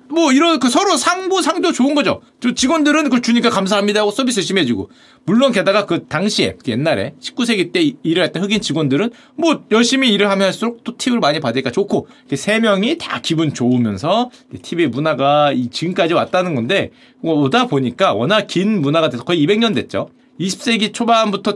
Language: Korean